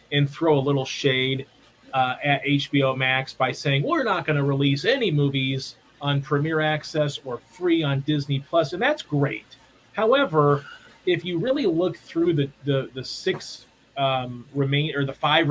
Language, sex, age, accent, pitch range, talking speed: English, male, 30-49, American, 135-150 Hz, 170 wpm